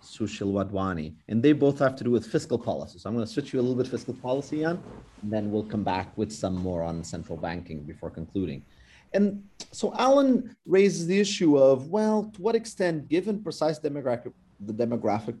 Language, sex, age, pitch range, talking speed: English, male, 30-49, 110-160 Hz, 200 wpm